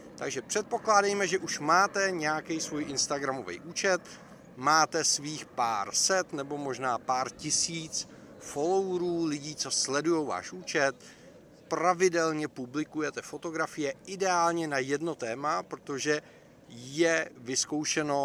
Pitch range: 140-170 Hz